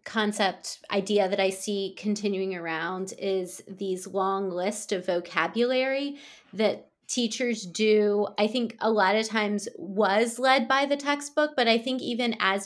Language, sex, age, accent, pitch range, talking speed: English, female, 20-39, American, 195-225 Hz, 150 wpm